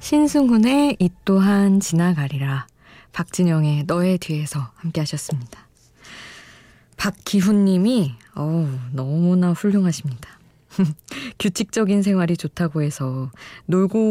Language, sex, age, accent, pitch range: Korean, female, 20-39, native, 150-205 Hz